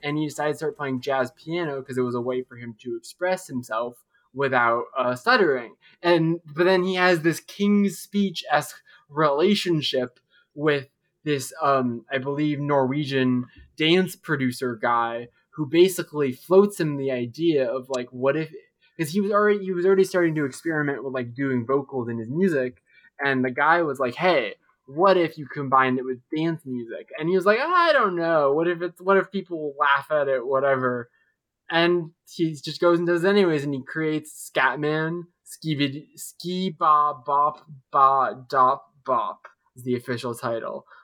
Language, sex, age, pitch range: English, male, 20-39, 130-175 Hz